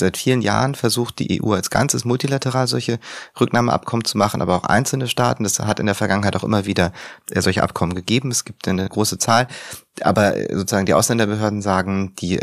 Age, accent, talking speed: 30-49, German, 190 wpm